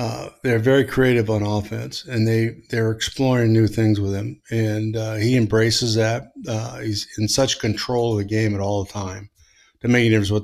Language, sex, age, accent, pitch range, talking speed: English, male, 50-69, American, 105-125 Hz, 205 wpm